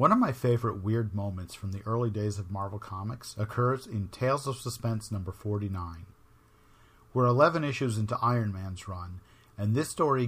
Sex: male